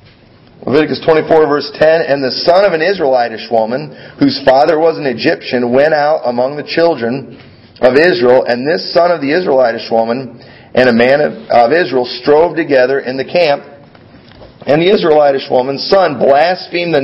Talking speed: 165 wpm